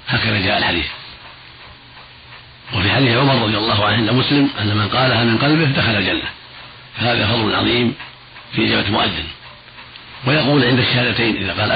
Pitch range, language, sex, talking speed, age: 105-120 Hz, Arabic, male, 150 wpm, 40-59